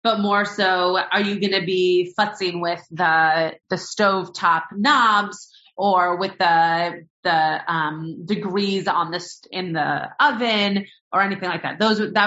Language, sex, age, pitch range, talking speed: English, female, 30-49, 165-225 Hz, 160 wpm